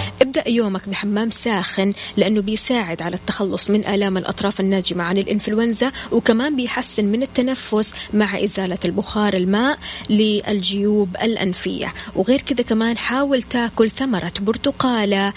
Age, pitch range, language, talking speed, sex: 20-39, 195-235 Hz, Arabic, 120 wpm, female